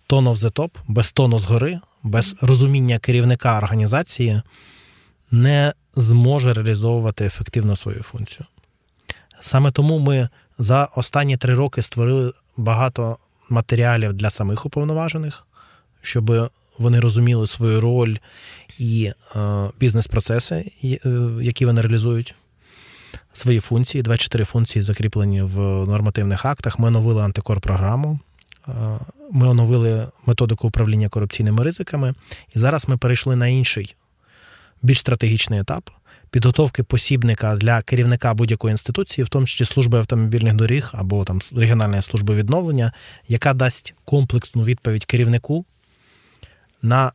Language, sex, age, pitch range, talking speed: Ukrainian, male, 20-39, 110-130 Hz, 115 wpm